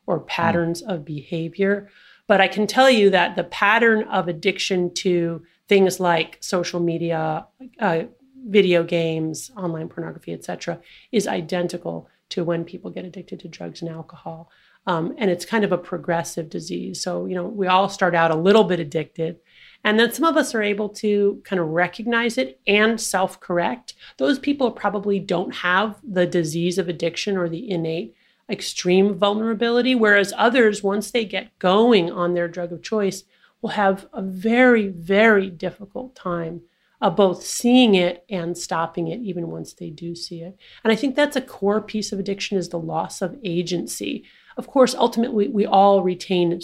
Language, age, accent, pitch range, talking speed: English, 30-49, American, 170-210 Hz, 175 wpm